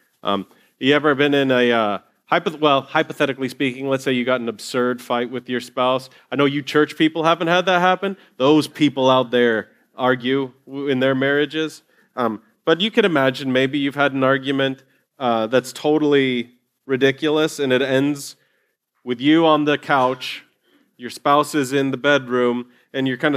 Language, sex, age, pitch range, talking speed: English, male, 30-49, 130-160 Hz, 175 wpm